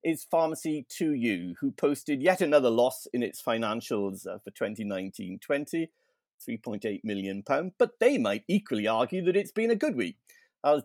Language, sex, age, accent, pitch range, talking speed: English, male, 50-69, British, 115-170 Hz, 155 wpm